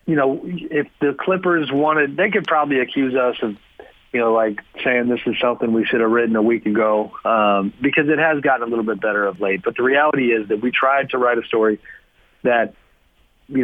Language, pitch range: English, 110-130 Hz